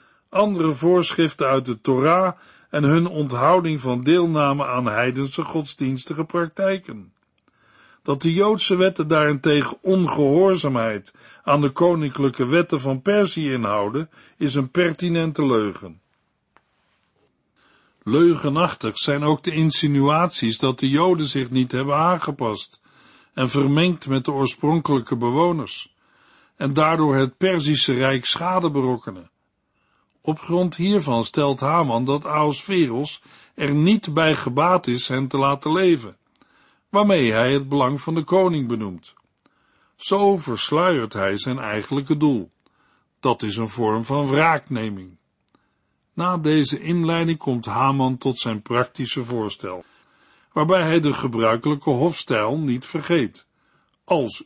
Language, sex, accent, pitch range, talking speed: Dutch, male, Dutch, 130-170 Hz, 120 wpm